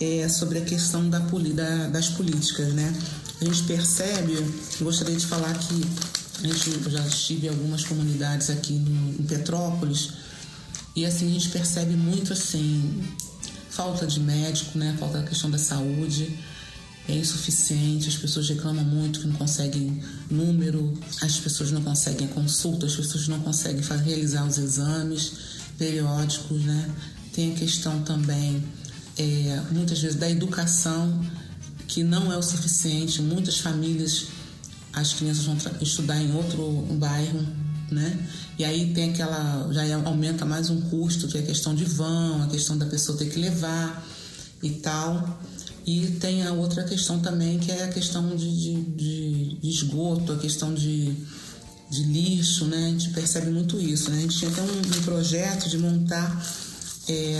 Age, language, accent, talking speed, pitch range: 30-49, Portuguese, Brazilian, 165 wpm, 150-170 Hz